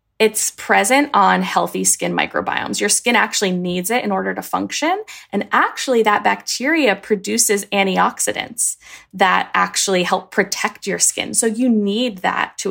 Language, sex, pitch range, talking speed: English, female, 180-220 Hz, 150 wpm